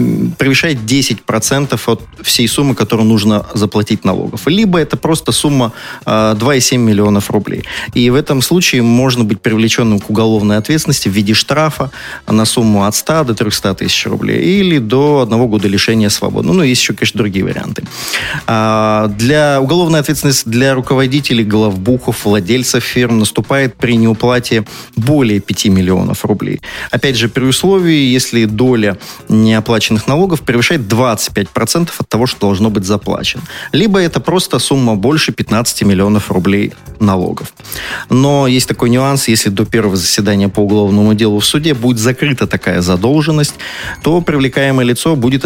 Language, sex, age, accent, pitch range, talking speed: Russian, male, 30-49, native, 105-135 Hz, 145 wpm